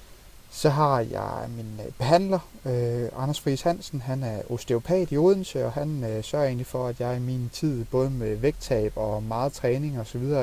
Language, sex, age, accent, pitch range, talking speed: Danish, male, 30-49, native, 120-150 Hz, 185 wpm